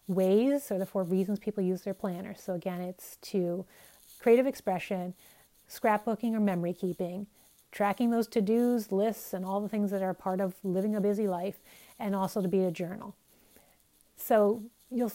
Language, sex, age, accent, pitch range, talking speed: English, female, 30-49, American, 190-230 Hz, 170 wpm